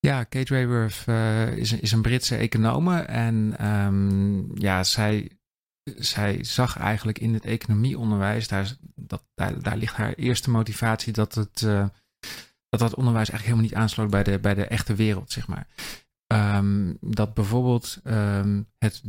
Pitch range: 100-115 Hz